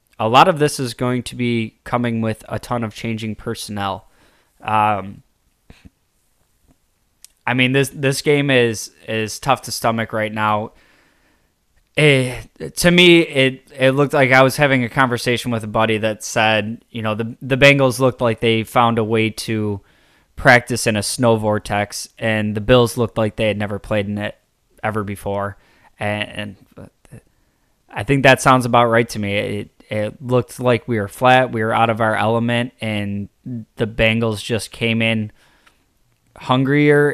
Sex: male